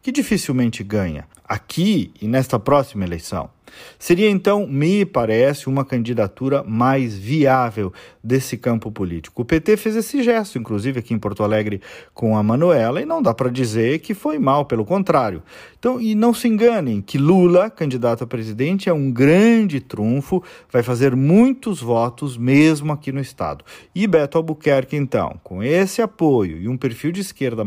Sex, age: male, 40-59